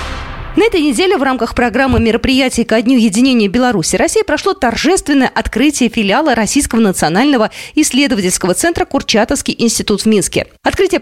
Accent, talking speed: native, 140 wpm